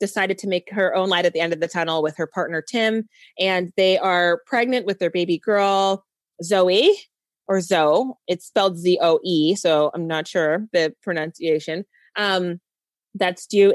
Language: English